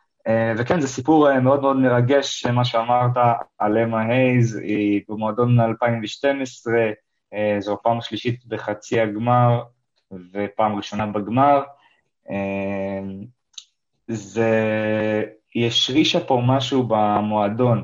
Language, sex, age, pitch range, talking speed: Hebrew, male, 20-39, 105-125 Hz, 105 wpm